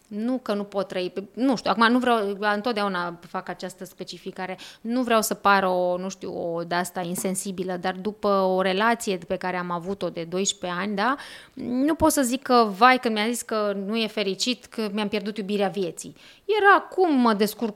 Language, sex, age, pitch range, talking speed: Romanian, female, 20-39, 195-245 Hz, 195 wpm